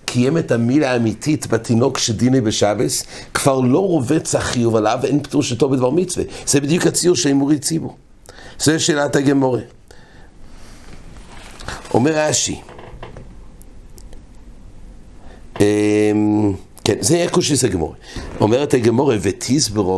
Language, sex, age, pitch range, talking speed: English, male, 60-79, 105-145 Hz, 105 wpm